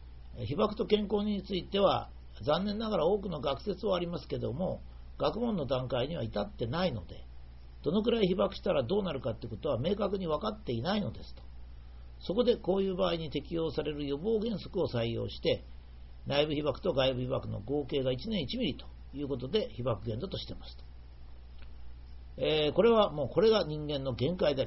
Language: Japanese